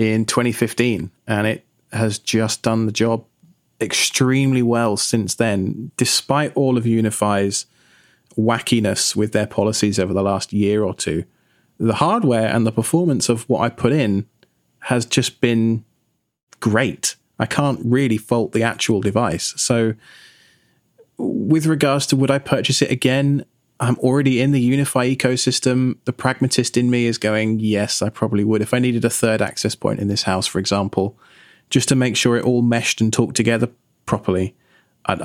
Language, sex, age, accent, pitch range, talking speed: English, male, 20-39, British, 110-130 Hz, 165 wpm